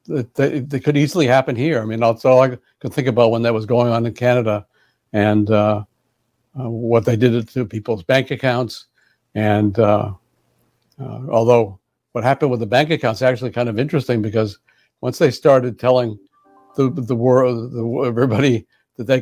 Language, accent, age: English, American, 60-79